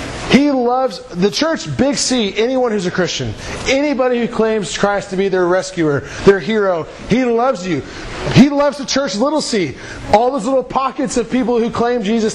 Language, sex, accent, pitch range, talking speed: English, male, American, 170-230 Hz, 185 wpm